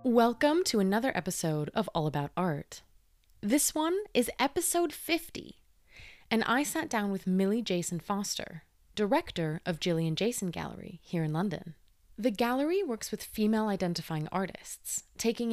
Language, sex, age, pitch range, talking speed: English, female, 20-39, 170-235 Hz, 145 wpm